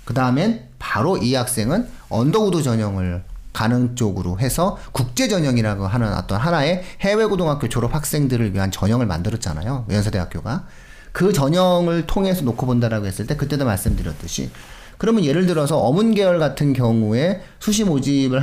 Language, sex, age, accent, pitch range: Korean, male, 40-59, native, 105-160 Hz